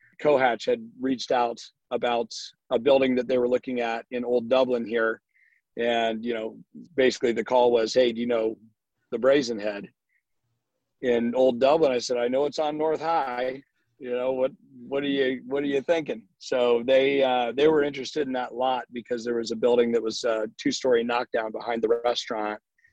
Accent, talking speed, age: American, 195 wpm, 40-59